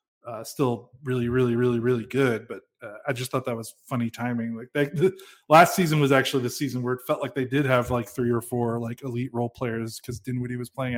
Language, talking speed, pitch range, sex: English, 235 wpm, 125-145 Hz, male